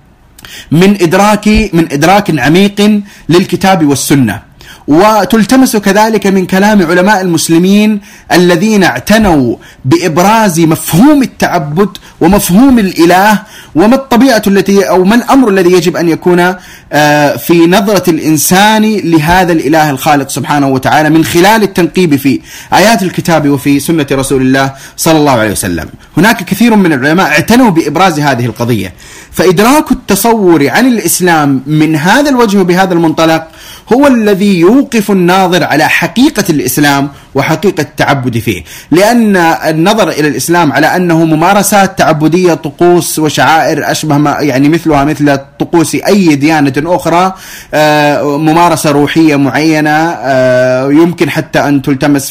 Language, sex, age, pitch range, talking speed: Arabic, male, 30-49, 145-195 Hz, 120 wpm